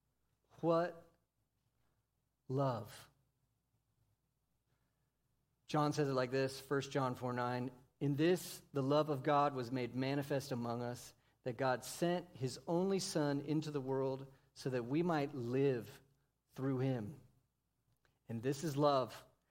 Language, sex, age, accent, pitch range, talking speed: English, male, 40-59, American, 125-145 Hz, 130 wpm